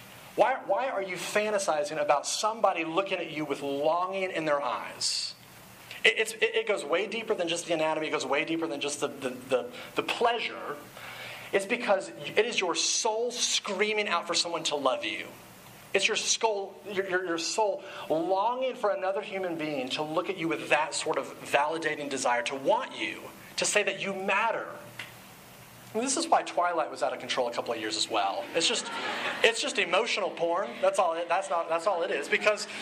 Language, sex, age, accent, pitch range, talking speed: English, male, 30-49, American, 165-225 Hz, 200 wpm